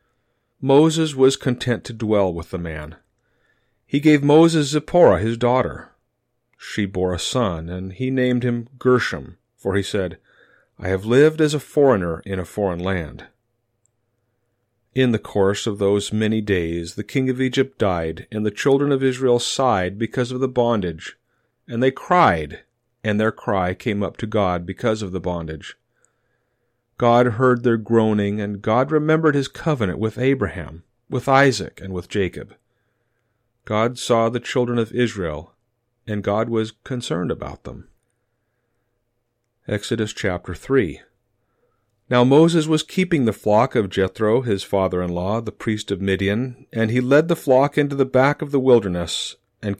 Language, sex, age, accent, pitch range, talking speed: English, male, 40-59, American, 100-125 Hz, 155 wpm